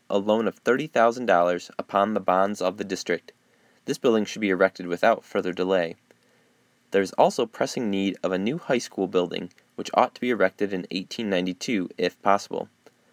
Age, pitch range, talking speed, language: 20-39, 95-120 Hz, 175 wpm, English